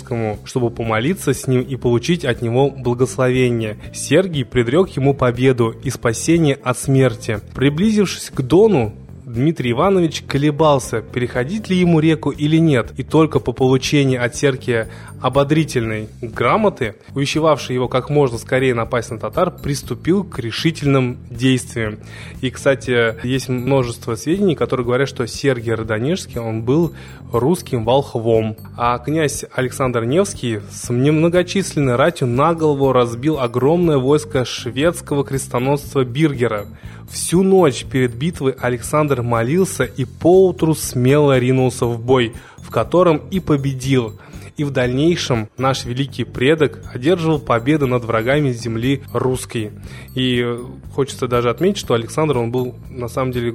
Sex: male